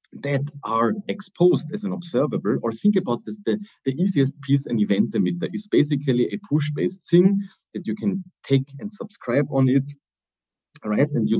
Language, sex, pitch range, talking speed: English, male, 120-165 Hz, 180 wpm